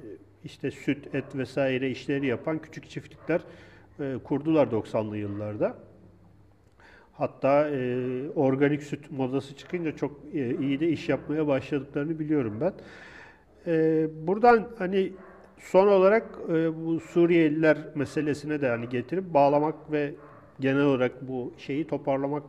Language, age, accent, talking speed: Turkish, 50-69, native, 110 wpm